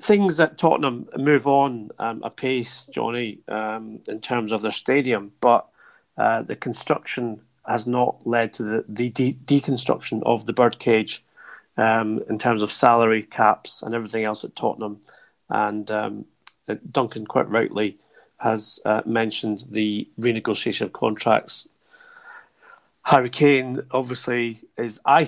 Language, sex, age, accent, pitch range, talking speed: English, male, 30-49, British, 110-125 Hz, 135 wpm